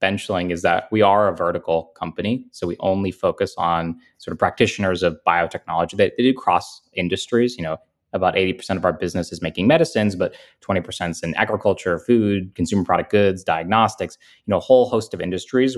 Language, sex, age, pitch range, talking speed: English, male, 20-39, 90-115 Hz, 190 wpm